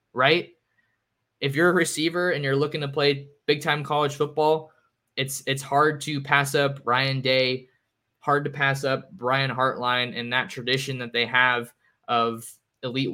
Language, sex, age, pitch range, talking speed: English, male, 20-39, 125-145 Hz, 165 wpm